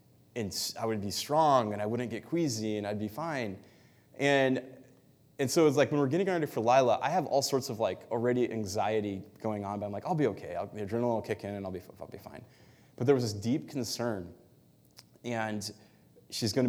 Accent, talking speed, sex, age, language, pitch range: American, 225 wpm, male, 20-39, English, 100-130 Hz